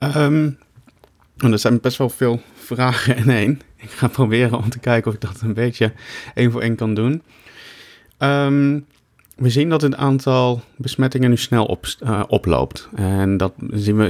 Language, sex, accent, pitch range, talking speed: Dutch, male, Dutch, 95-120 Hz, 155 wpm